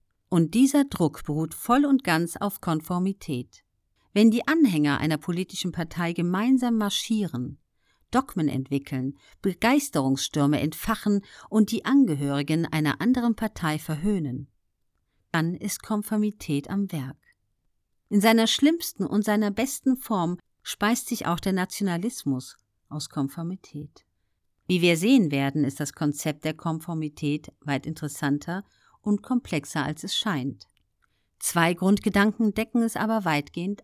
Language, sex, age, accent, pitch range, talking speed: German, female, 50-69, German, 145-210 Hz, 120 wpm